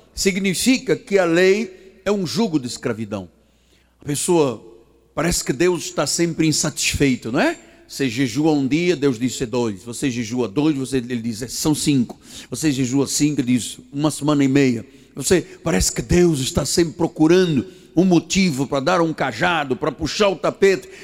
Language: Portuguese